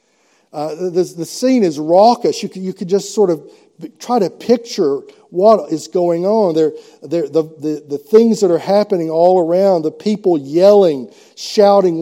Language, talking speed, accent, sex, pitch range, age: English, 155 wpm, American, male, 165-230 Hz, 50-69